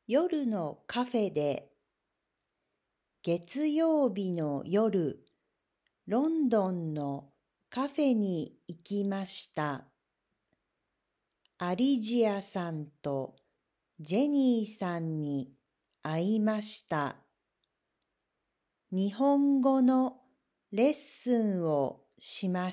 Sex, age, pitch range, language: female, 50-69, 165-255 Hz, Japanese